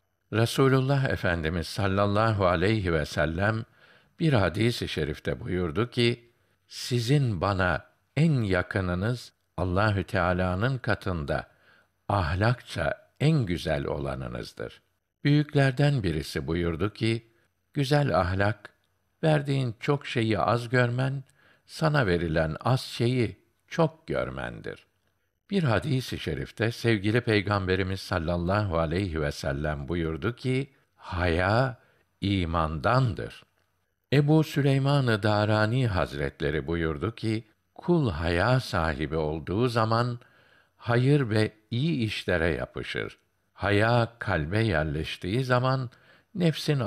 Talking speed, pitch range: 95 wpm, 85-125 Hz